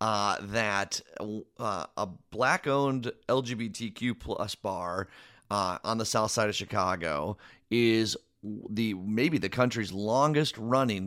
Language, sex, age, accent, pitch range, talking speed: English, male, 30-49, American, 100-120 Hz, 115 wpm